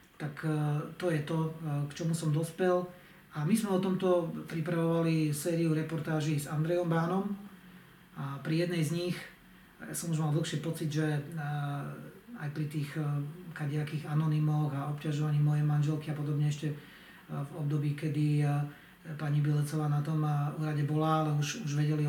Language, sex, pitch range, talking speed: Slovak, male, 150-170 Hz, 150 wpm